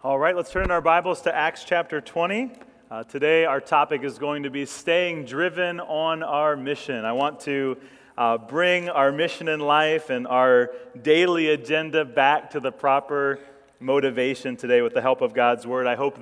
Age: 30-49